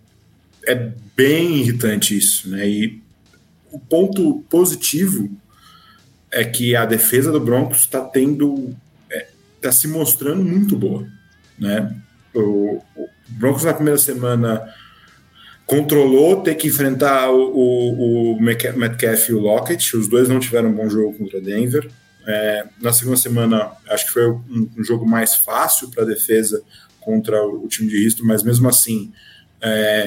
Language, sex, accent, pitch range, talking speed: English, male, Brazilian, 110-140 Hz, 150 wpm